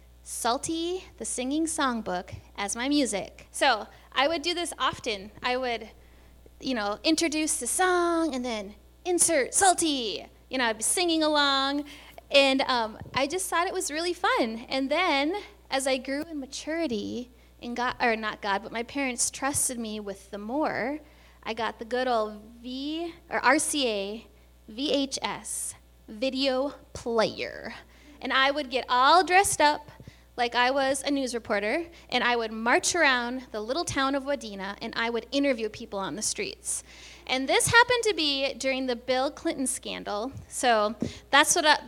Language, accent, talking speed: English, American, 165 wpm